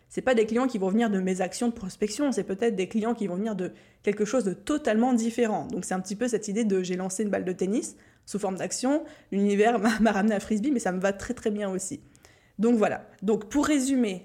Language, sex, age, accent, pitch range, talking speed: French, female, 20-39, French, 195-235 Hz, 265 wpm